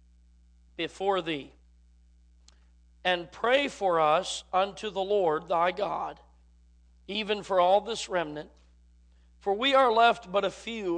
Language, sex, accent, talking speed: English, male, American, 125 wpm